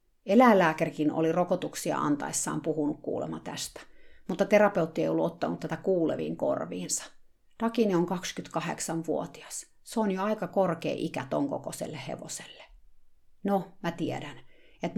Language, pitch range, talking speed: Finnish, 160-195 Hz, 115 wpm